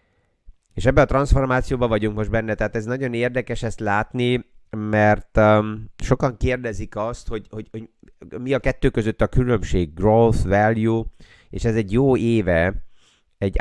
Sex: male